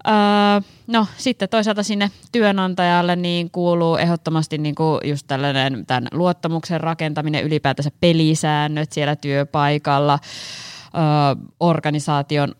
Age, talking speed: 20-39, 85 wpm